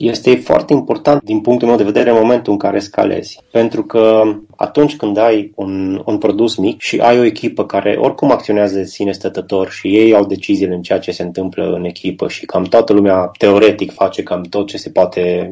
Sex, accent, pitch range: male, native, 100-145 Hz